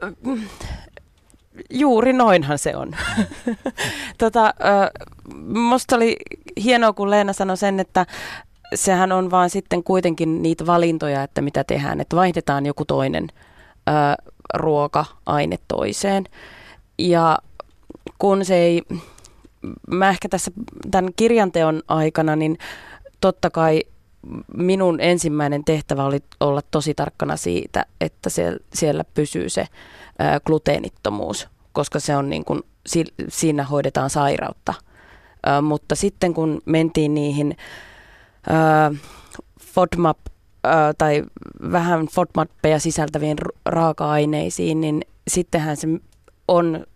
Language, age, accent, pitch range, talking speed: Finnish, 30-49, native, 150-190 Hz, 100 wpm